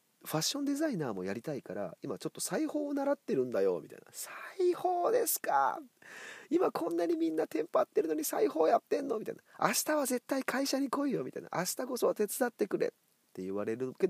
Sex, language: male, Japanese